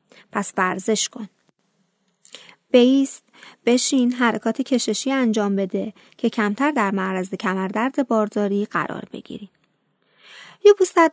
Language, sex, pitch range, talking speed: Persian, female, 210-265 Hz, 100 wpm